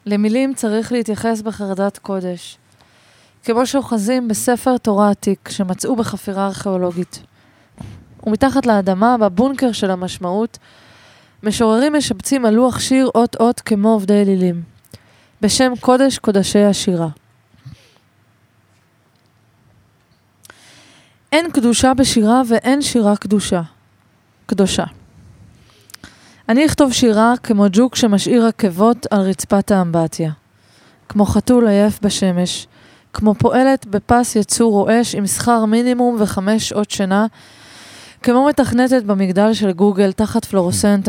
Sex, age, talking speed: female, 20-39, 100 wpm